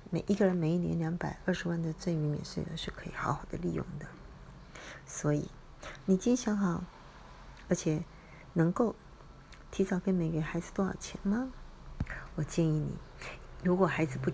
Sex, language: female, Chinese